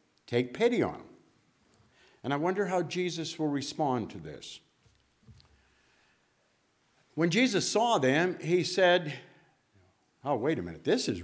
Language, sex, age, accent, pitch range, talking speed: English, male, 60-79, American, 145-225 Hz, 135 wpm